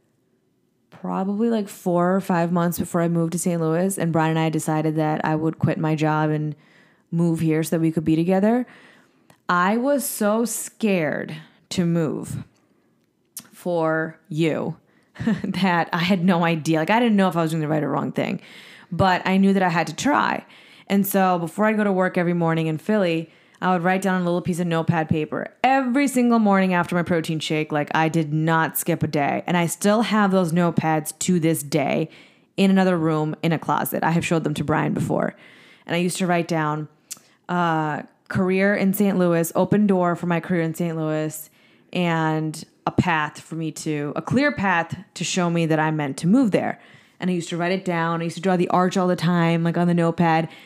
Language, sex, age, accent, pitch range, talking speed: English, female, 20-39, American, 160-190 Hz, 215 wpm